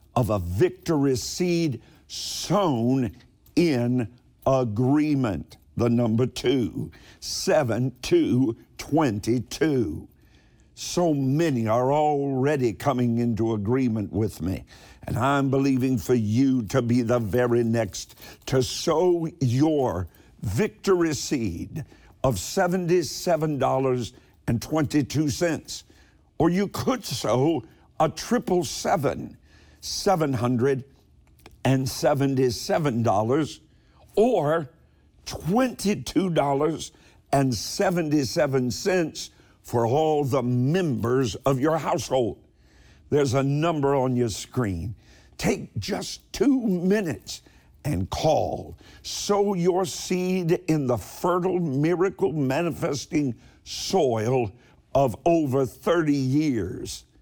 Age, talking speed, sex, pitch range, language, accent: 50-69, 85 wpm, male, 120-160 Hz, English, American